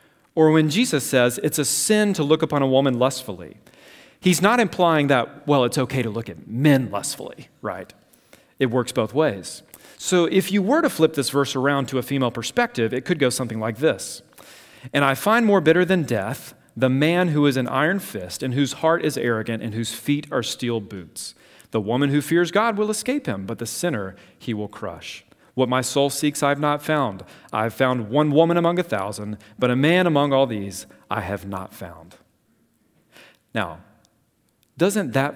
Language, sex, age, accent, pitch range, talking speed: English, male, 40-59, American, 115-150 Hz, 200 wpm